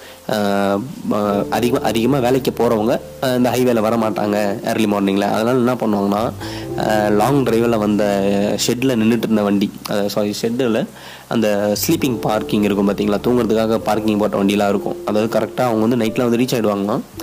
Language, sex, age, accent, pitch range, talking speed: Tamil, male, 20-39, native, 105-120 Hz, 135 wpm